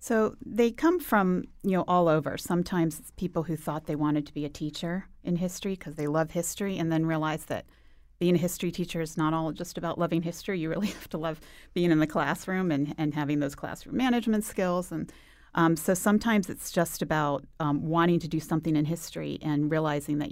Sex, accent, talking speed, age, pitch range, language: female, American, 215 wpm, 40-59, 140-165 Hz, English